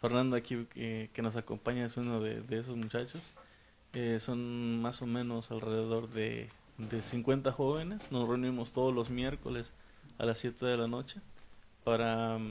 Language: English